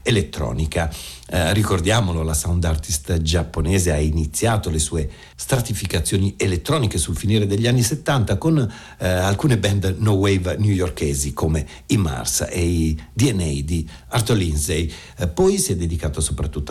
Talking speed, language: 145 wpm, Italian